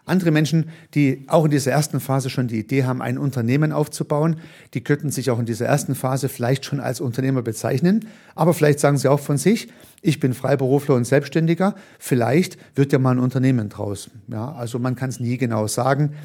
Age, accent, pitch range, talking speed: 50-69, German, 125-160 Hz, 200 wpm